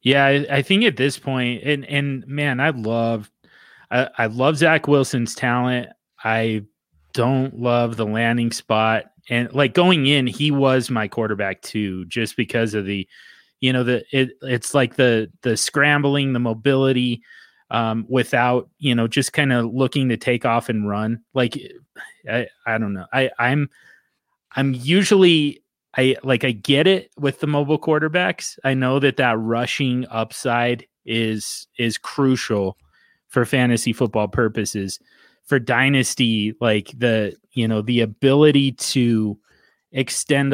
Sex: male